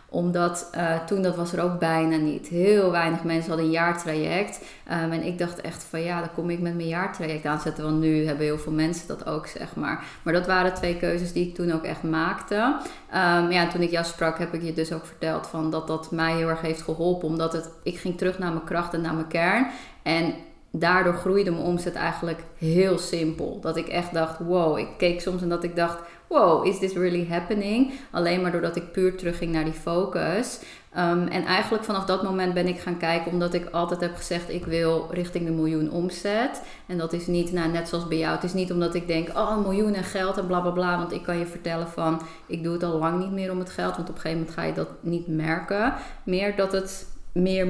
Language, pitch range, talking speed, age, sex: English, 165-180 Hz, 235 wpm, 20-39, female